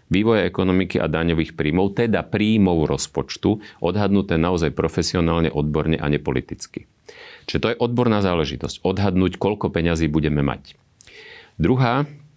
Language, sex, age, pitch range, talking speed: Slovak, male, 40-59, 80-105 Hz, 120 wpm